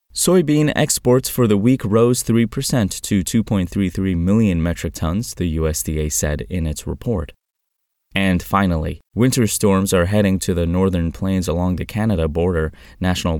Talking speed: 150 wpm